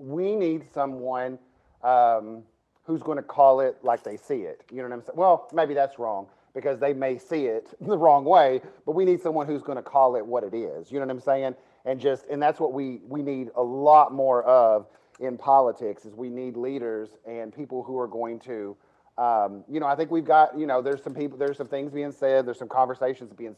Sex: male